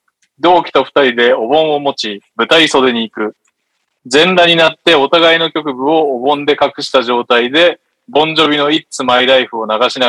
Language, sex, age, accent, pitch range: Japanese, male, 20-39, native, 120-160 Hz